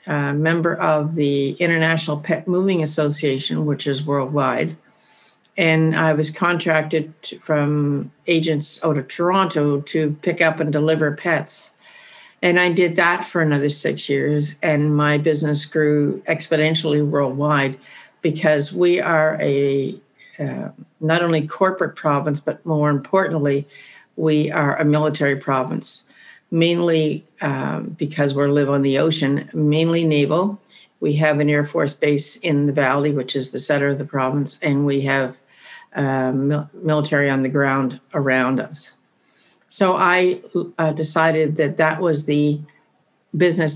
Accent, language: American, English